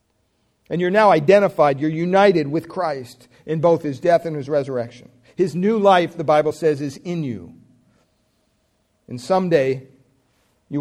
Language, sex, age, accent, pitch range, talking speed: English, male, 50-69, American, 125-170 Hz, 150 wpm